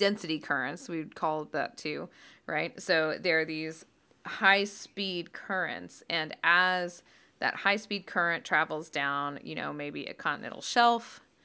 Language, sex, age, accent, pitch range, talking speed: English, female, 20-39, American, 150-195 Hz, 145 wpm